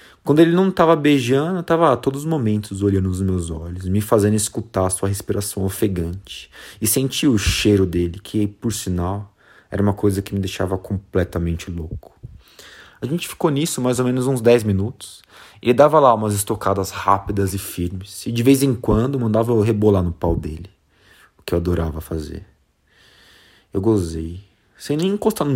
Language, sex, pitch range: Portuguese, male, 90-110 Hz